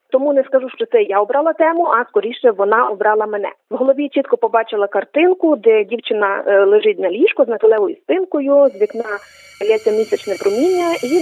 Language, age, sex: Ukrainian, 30-49, female